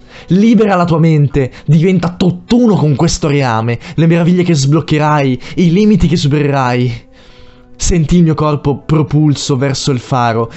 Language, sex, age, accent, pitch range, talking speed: Italian, male, 20-39, native, 125-160 Hz, 140 wpm